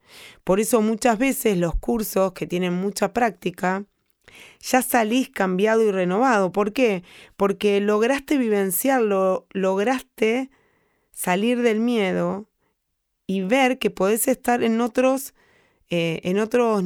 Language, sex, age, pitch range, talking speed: Spanish, female, 20-39, 175-230 Hz, 115 wpm